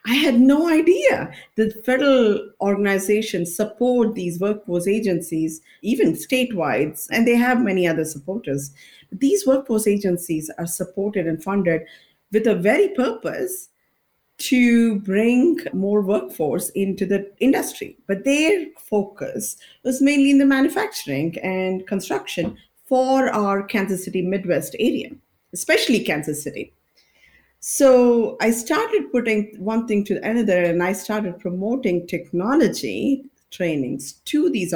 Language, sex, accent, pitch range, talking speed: English, female, Indian, 175-250 Hz, 125 wpm